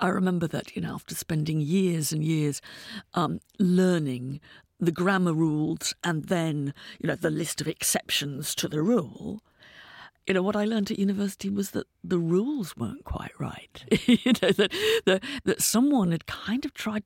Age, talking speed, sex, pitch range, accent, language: 50-69, 175 wpm, female, 160-215 Hz, British, English